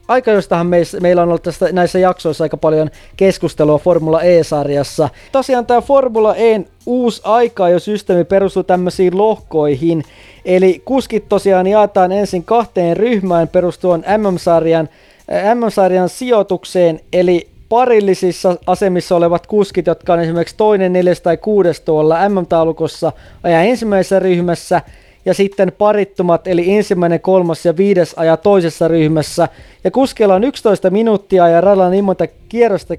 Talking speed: 135 wpm